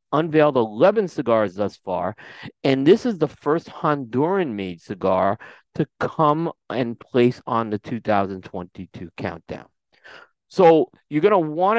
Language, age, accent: English, 40-59, American